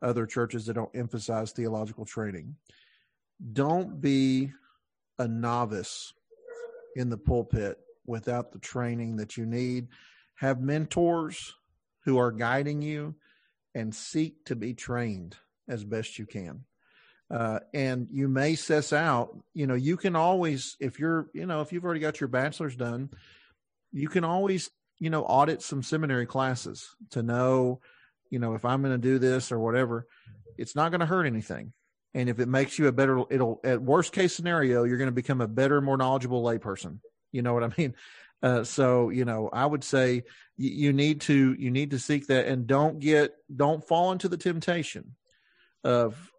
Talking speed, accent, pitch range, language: 175 wpm, American, 120-150 Hz, English